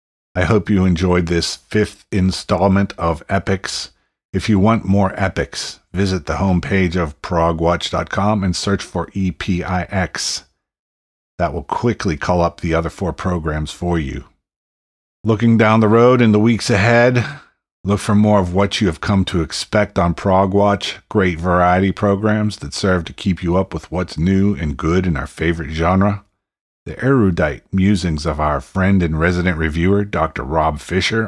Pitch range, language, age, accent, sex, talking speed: 80-105 Hz, English, 50-69, American, male, 165 wpm